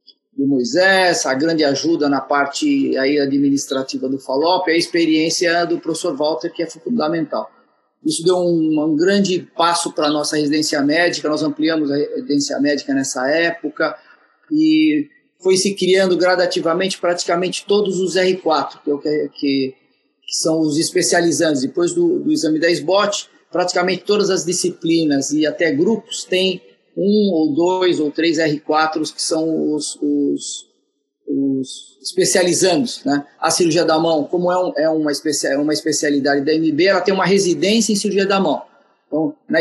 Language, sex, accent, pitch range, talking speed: Portuguese, male, Brazilian, 150-185 Hz, 155 wpm